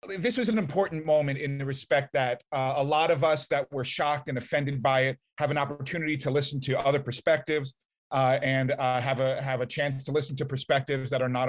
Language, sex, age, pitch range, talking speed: English, male, 30-49, 135-160 Hz, 230 wpm